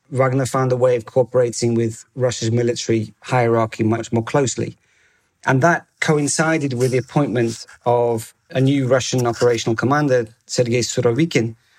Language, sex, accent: English, male, British